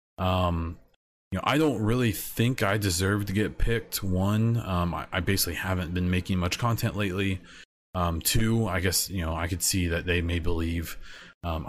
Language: English